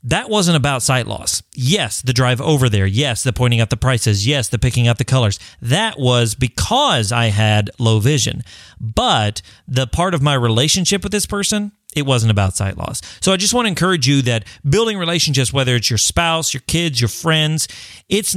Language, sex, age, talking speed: English, male, 40-59, 205 wpm